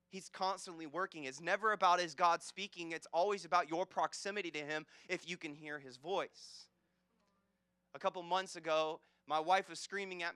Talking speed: 180 wpm